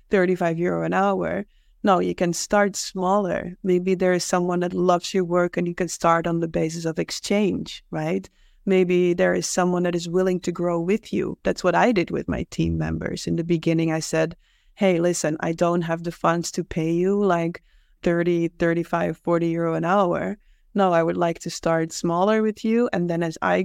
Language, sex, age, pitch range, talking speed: English, female, 20-39, 170-195 Hz, 205 wpm